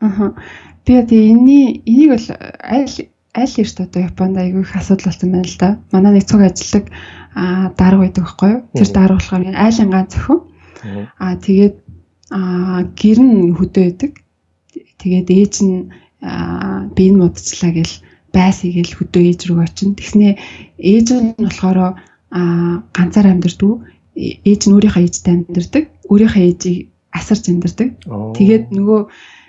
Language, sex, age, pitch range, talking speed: English, female, 20-39, 180-210 Hz, 50 wpm